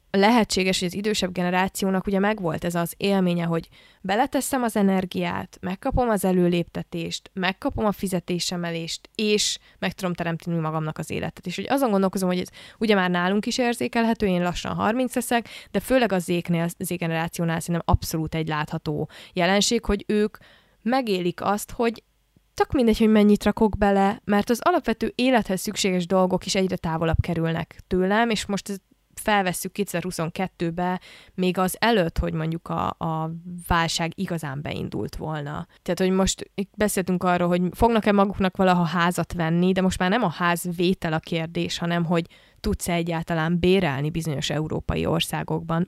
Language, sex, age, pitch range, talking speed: Hungarian, female, 20-39, 170-205 Hz, 155 wpm